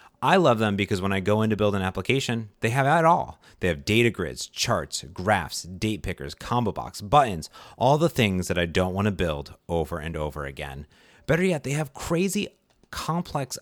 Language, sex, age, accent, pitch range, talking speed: English, male, 30-49, American, 85-115 Hz, 200 wpm